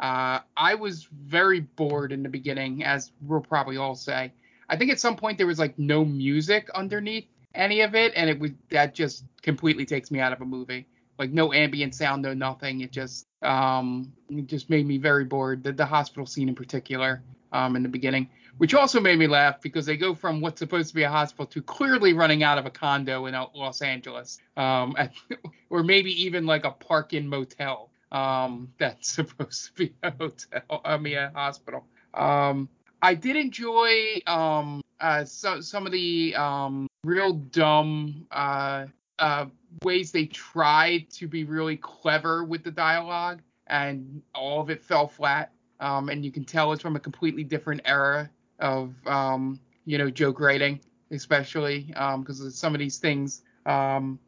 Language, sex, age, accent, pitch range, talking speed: English, male, 30-49, American, 135-160 Hz, 185 wpm